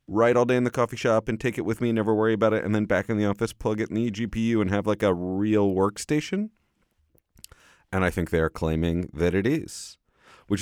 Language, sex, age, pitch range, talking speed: English, male, 30-49, 80-105 Hz, 245 wpm